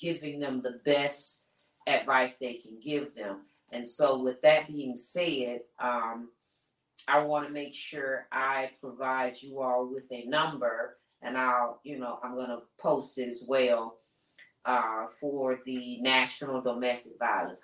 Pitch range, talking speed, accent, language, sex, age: 125-155 Hz, 155 wpm, American, English, female, 40-59